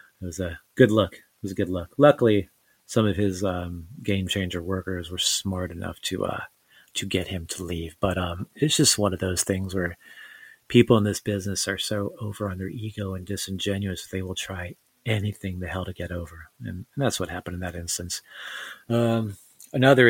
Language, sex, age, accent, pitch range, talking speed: English, male, 30-49, American, 95-115 Hz, 205 wpm